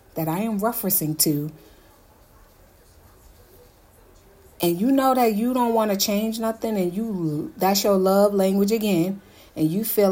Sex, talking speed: female, 150 wpm